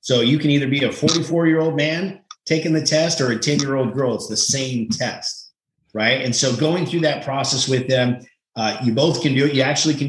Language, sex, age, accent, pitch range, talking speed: English, male, 30-49, American, 115-145 Hz, 220 wpm